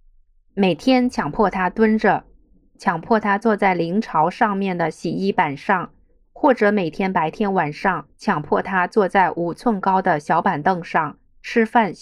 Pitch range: 170-215 Hz